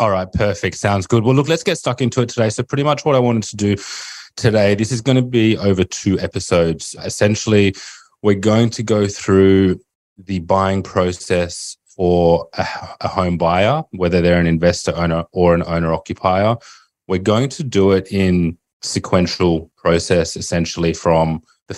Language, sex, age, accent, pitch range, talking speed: English, male, 20-39, Australian, 85-105 Hz, 175 wpm